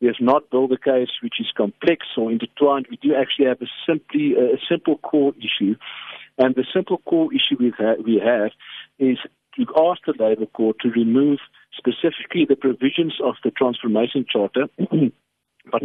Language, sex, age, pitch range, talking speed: English, male, 50-69, 115-160 Hz, 175 wpm